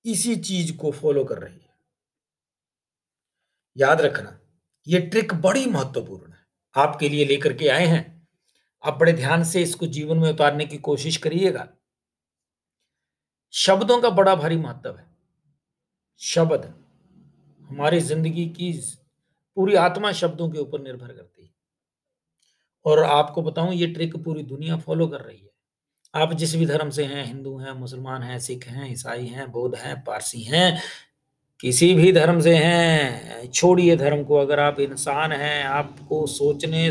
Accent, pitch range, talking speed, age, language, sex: native, 145-175 Hz, 150 wpm, 50-69, Hindi, male